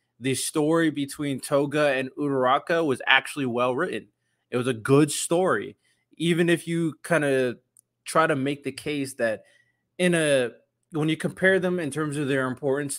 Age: 20-39